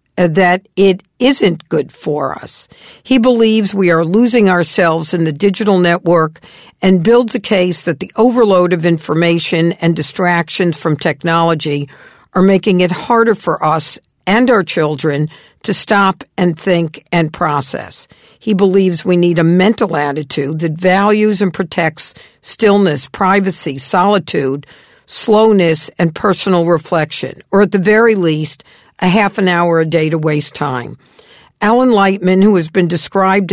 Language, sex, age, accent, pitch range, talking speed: English, female, 50-69, American, 160-195 Hz, 145 wpm